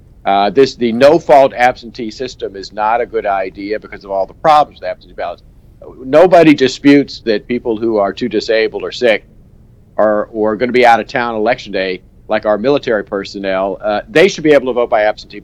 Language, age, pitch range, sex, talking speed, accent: English, 50-69, 105-135 Hz, male, 200 wpm, American